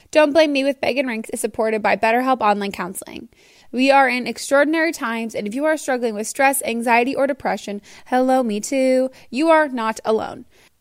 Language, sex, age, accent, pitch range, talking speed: English, female, 20-39, American, 220-270 Hz, 195 wpm